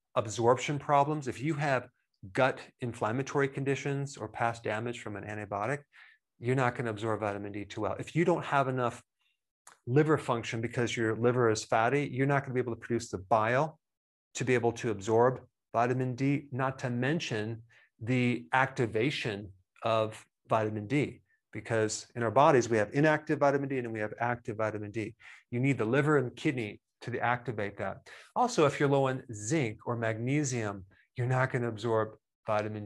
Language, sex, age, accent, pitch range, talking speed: English, male, 30-49, American, 110-135 Hz, 180 wpm